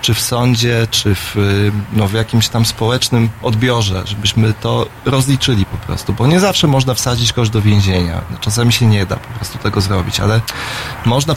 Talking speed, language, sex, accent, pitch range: 175 wpm, Polish, male, native, 115-135 Hz